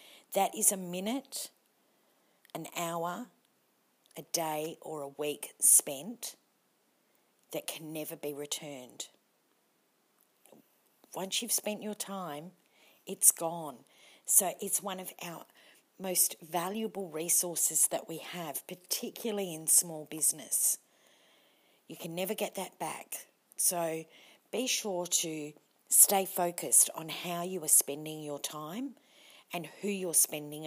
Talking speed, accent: 120 wpm, Australian